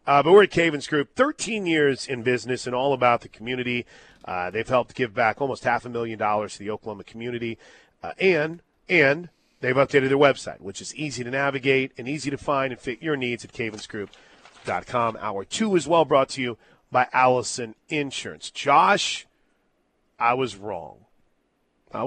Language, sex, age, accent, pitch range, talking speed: English, male, 40-59, American, 125-150 Hz, 180 wpm